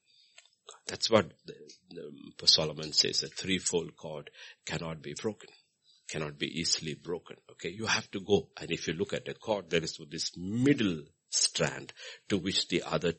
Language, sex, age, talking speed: English, male, 60-79, 160 wpm